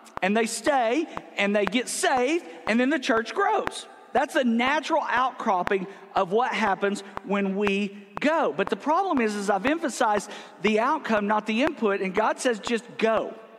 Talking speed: 170 wpm